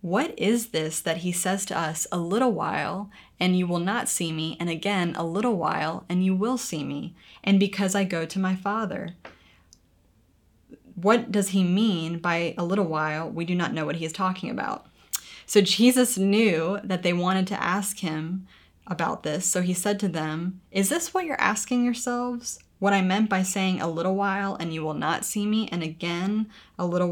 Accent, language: American, English